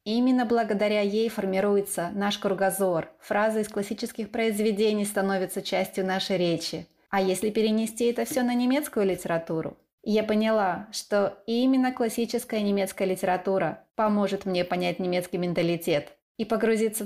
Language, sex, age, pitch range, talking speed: Russian, female, 20-39, 195-230 Hz, 125 wpm